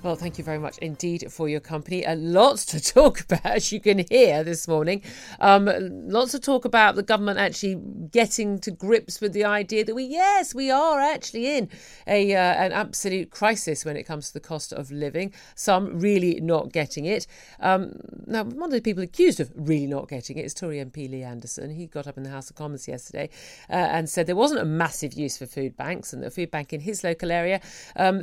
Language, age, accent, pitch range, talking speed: English, 40-59, British, 155-235 Hz, 225 wpm